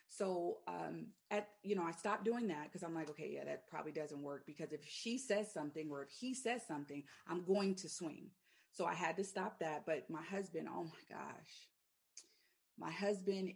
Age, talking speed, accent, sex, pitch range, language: 30-49, 205 wpm, American, female, 155-190 Hz, English